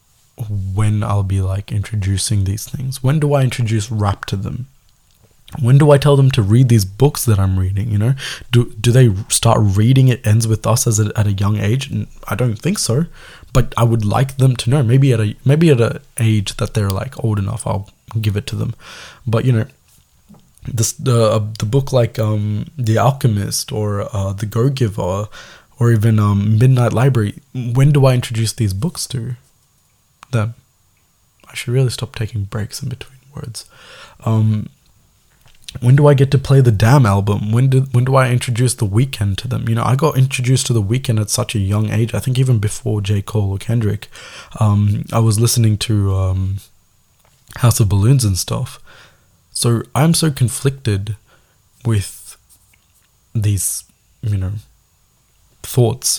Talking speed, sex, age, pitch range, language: 185 wpm, male, 20-39, 105-125 Hz, Tamil